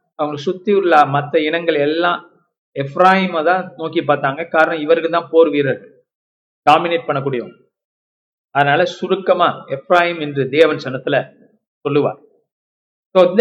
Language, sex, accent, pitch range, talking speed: Tamil, male, native, 150-200 Hz, 105 wpm